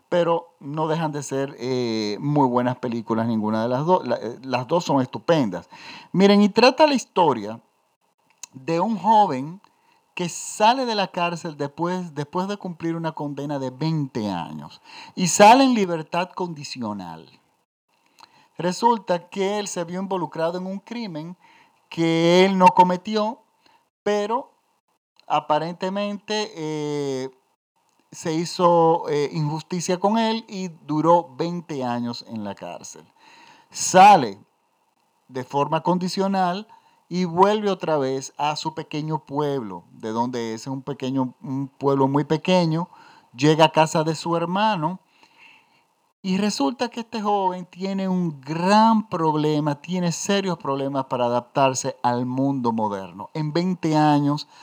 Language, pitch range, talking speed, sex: Spanish, 140-190 Hz, 130 wpm, male